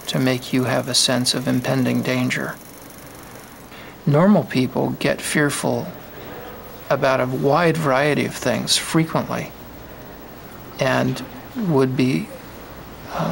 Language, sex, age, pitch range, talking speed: English, male, 50-69, 130-150 Hz, 110 wpm